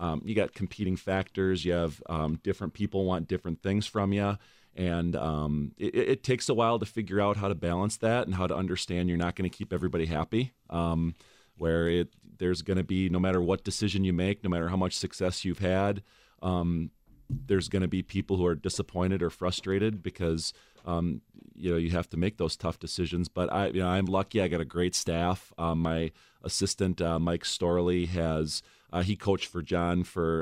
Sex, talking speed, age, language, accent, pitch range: male, 210 wpm, 30-49, English, American, 85-95 Hz